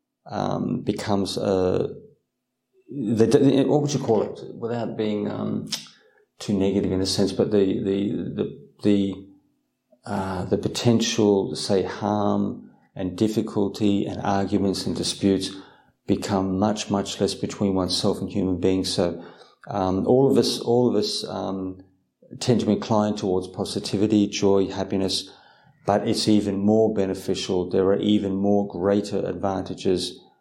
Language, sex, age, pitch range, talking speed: English, male, 40-59, 95-105 Hz, 140 wpm